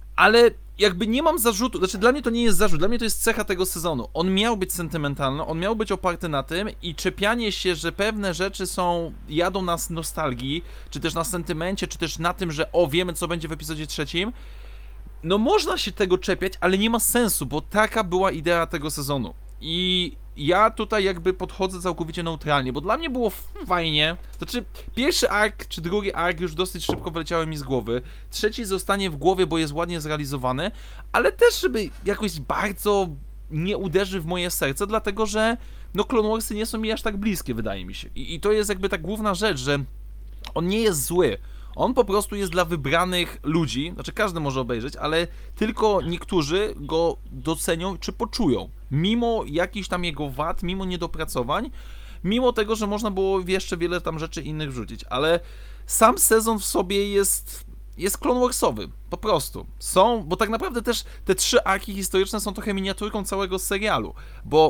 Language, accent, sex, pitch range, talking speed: Polish, native, male, 165-210 Hz, 185 wpm